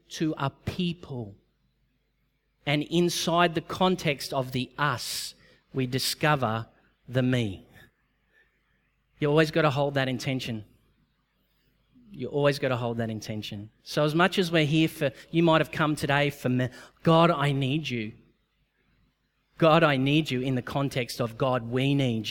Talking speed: 150 wpm